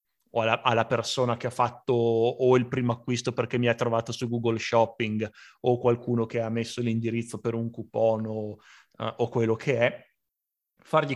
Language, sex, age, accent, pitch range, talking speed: Italian, male, 30-49, native, 115-140 Hz, 175 wpm